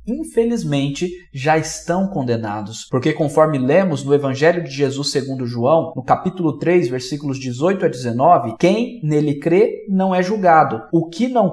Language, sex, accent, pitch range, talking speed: Portuguese, male, Brazilian, 135-185 Hz, 150 wpm